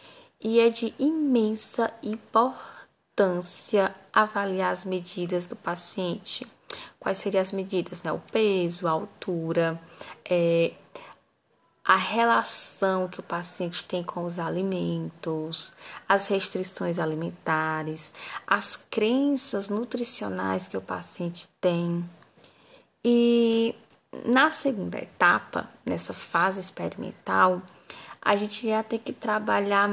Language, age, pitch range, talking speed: Amharic, 10-29, 175-235 Hz, 105 wpm